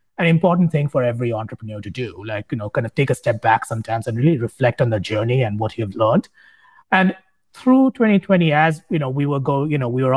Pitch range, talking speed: 120-165 Hz, 240 wpm